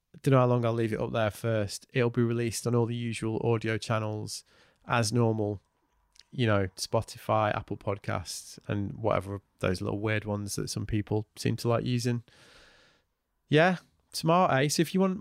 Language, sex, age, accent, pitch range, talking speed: English, male, 20-39, British, 110-130 Hz, 180 wpm